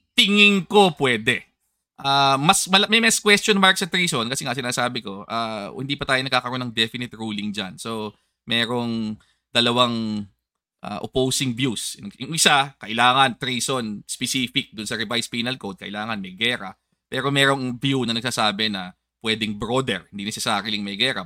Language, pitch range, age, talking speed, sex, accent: English, 110-170 Hz, 20-39, 155 wpm, male, Filipino